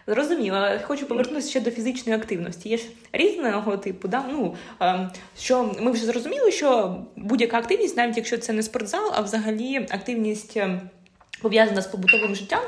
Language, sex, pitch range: Ukrainian, female, 210-255 Hz